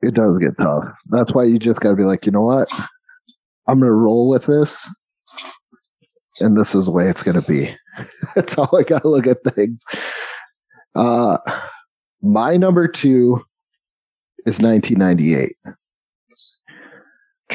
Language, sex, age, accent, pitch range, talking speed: English, male, 30-49, American, 110-160 Hz, 150 wpm